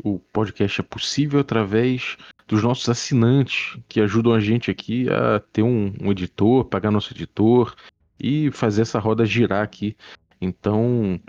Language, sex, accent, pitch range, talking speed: Portuguese, male, Brazilian, 100-120 Hz, 150 wpm